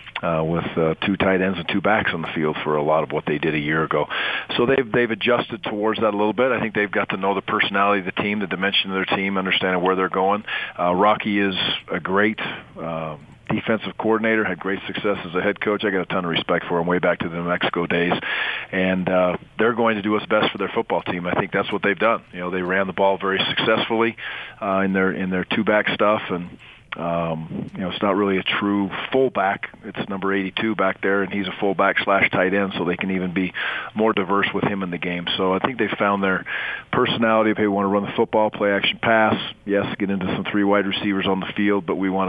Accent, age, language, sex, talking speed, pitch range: American, 40-59, English, male, 255 wpm, 90-100 Hz